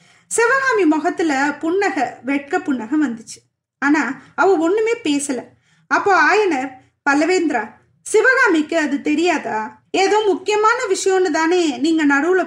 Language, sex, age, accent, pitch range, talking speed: Tamil, female, 20-39, native, 270-355 Hz, 105 wpm